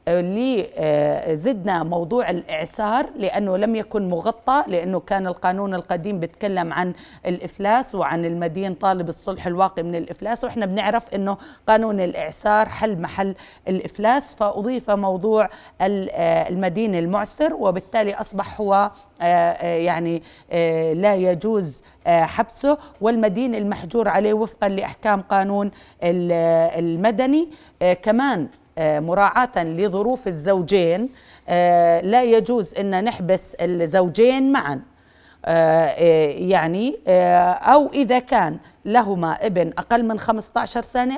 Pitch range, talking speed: 180-230 Hz, 100 wpm